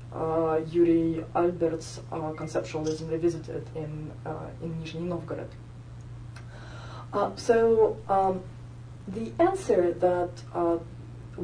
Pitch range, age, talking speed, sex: 155-190 Hz, 30-49, 95 wpm, female